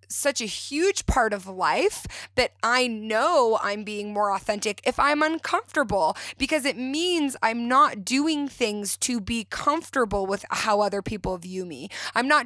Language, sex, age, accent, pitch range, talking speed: English, female, 20-39, American, 200-275 Hz, 165 wpm